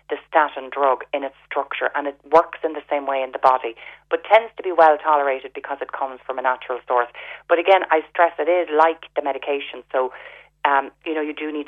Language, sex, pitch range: English, female, 140-170 Hz